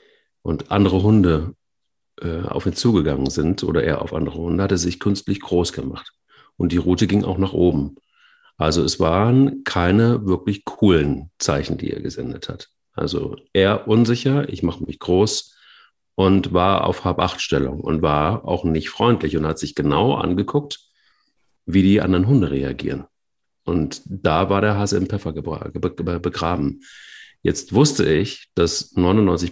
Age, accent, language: 40-59, German, German